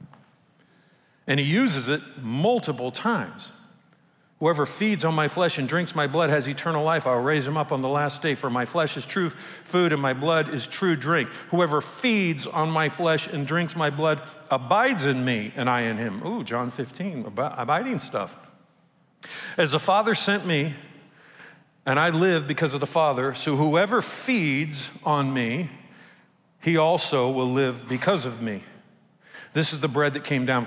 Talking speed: 175 wpm